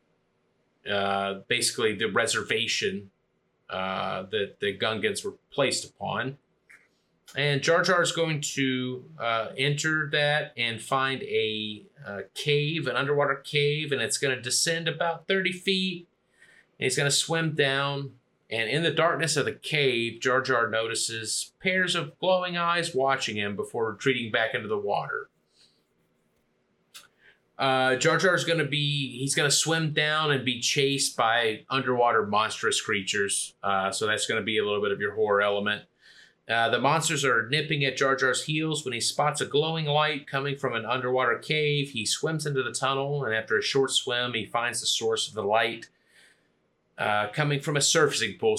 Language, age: English, 30-49